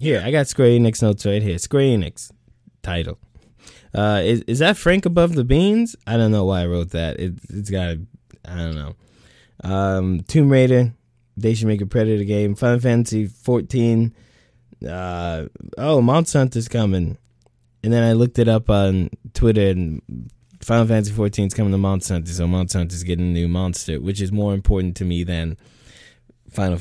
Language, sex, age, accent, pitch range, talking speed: English, male, 20-39, American, 90-120 Hz, 185 wpm